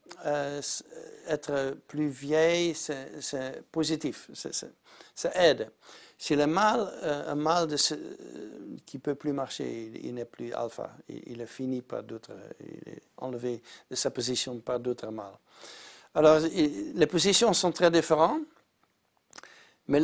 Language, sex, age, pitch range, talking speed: French, male, 60-79, 130-165 Hz, 140 wpm